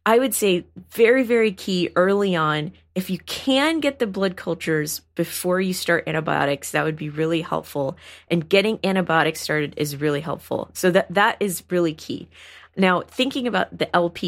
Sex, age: female, 30-49